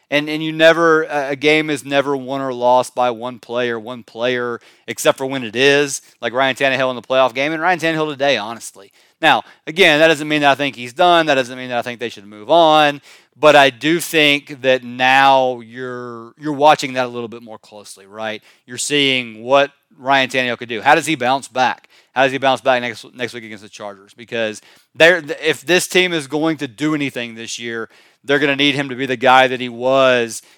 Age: 30-49